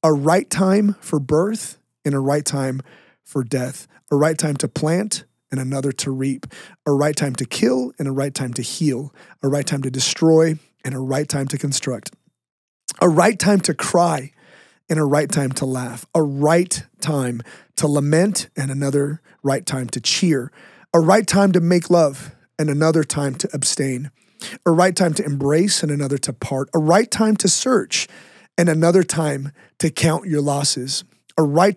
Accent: American